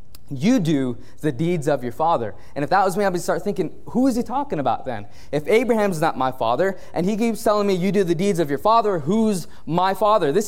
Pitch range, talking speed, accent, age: 150-220 Hz, 245 wpm, American, 20-39